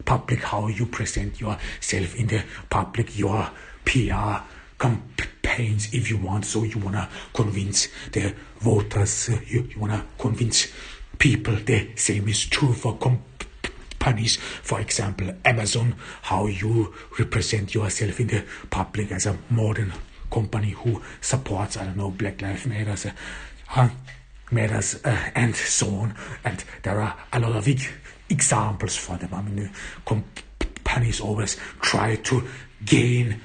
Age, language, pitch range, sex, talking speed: 60-79, English, 100-120 Hz, male, 140 wpm